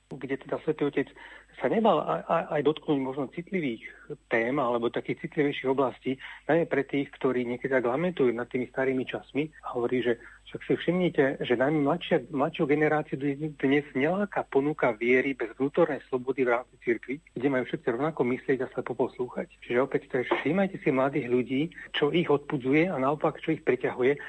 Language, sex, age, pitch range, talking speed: Slovak, male, 40-59, 120-145 Hz, 175 wpm